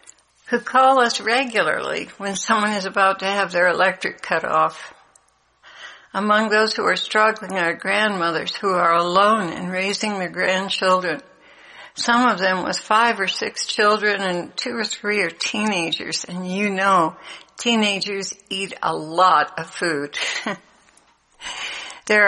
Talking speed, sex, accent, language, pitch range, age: 140 wpm, female, American, English, 185-210 Hz, 60-79